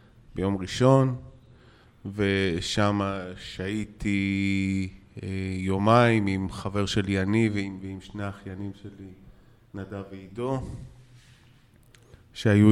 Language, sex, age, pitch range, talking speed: Hebrew, male, 20-39, 100-120 Hz, 80 wpm